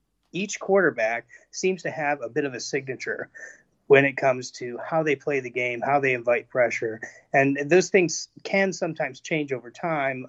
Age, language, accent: 30-49, English, American